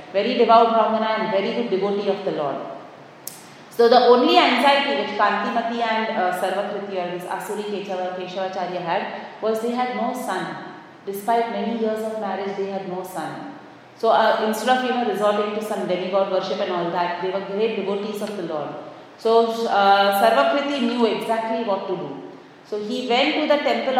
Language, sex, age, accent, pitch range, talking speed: English, female, 30-49, Indian, 190-230 Hz, 185 wpm